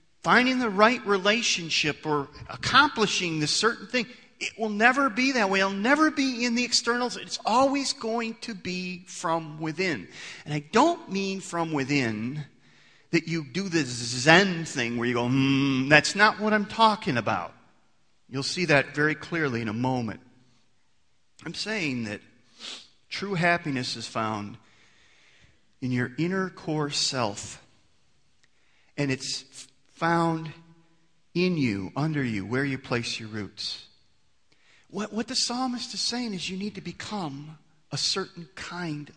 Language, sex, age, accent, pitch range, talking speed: English, male, 40-59, American, 135-205 Hz, 150 wpm